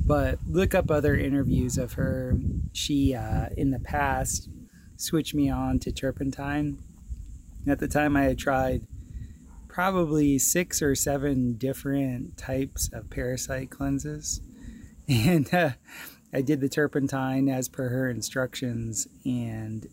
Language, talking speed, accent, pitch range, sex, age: English, 130 wpm, American, 120-135 Hz, male, 20-39